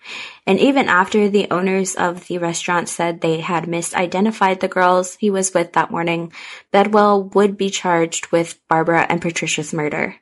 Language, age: English, 20-39